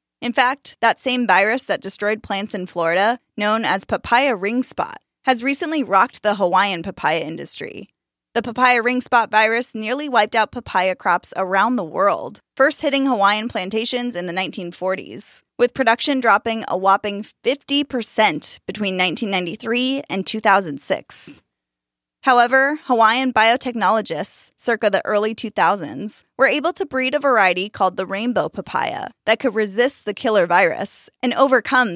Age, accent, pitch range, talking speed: 10-29, American, 190-250 Hz, 145 wpm